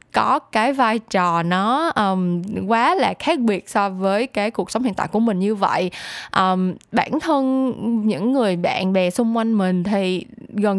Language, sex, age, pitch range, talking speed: Vietnamese, female, 10-29, 195-265 Hz, 185 wpm